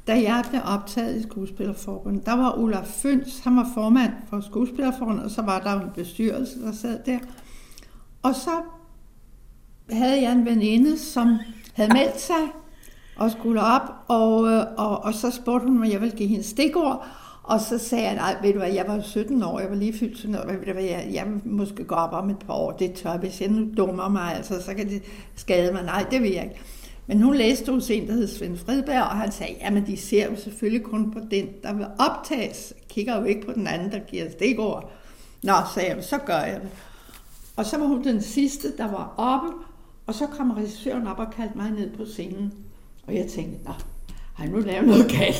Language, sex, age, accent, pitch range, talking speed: Danish, female, 60-79, native, 205-255 Hz, 215 wpm